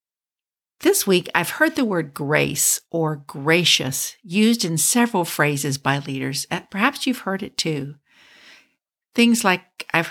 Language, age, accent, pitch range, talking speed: English, 50-69, American, 150-220 Hz, 135 wpm